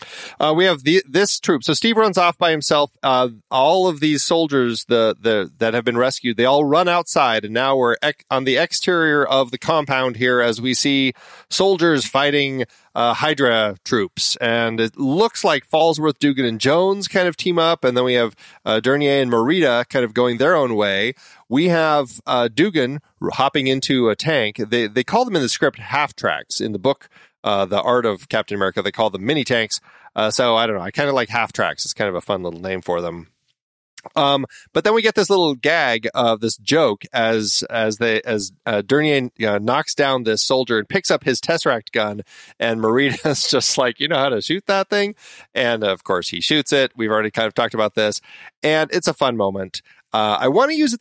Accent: American